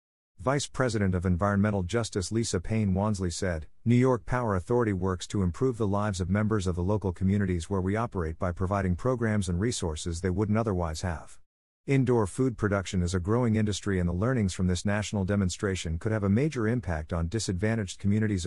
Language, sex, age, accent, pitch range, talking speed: English, male, 50-69, American, 90-115 Hz, 190 wpm